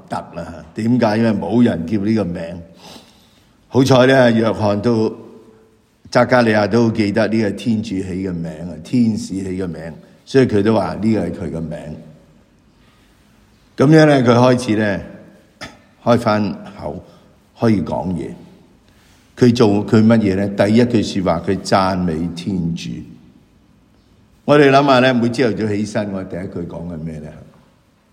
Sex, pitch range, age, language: male, 95-120 Hz, 60-79, English